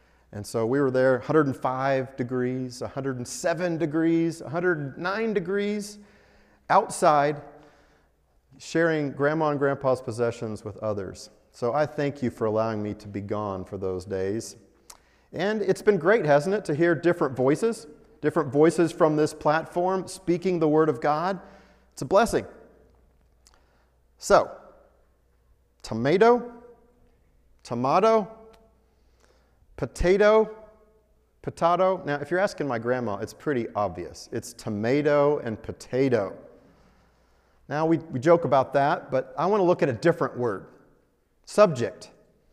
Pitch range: 115-170 Hz